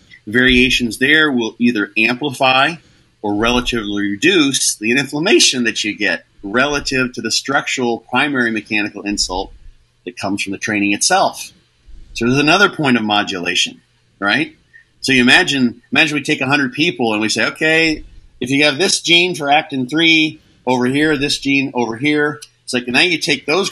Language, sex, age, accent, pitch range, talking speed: English, male, 40-59, American, 110-145 Hz, 165 wpm